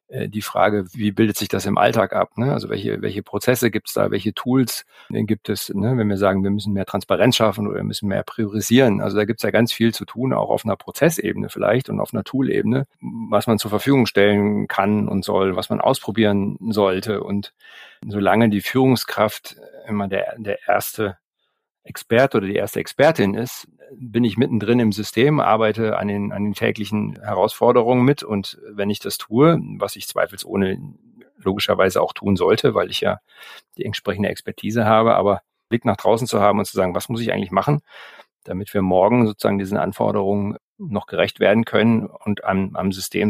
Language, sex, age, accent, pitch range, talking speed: German, male, 50-69, German, 100-115 Hz, 195 wpm